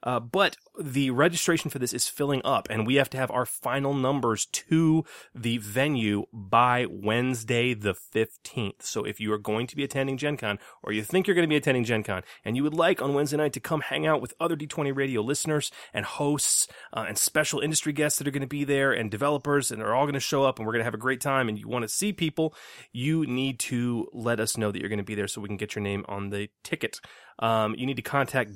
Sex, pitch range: male, 105-140 Hz